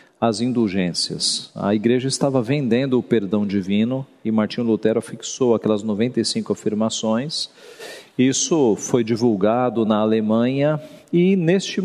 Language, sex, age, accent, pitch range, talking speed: Portuguese, male, 40-59, Brazilian, 115-150 Hz, 115 wpm